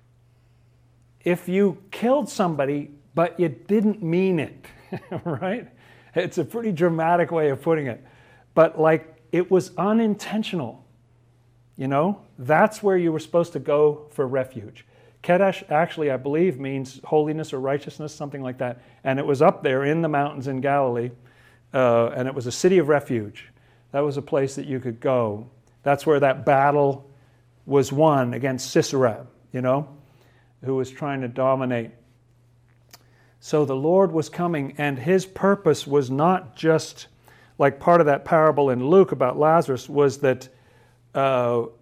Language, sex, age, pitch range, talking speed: English, male, 40-59, 125-160 Hz, 155 wpm